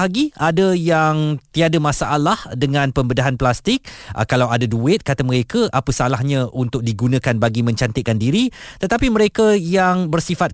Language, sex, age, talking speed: Malay, male, 20-39, 135 wpm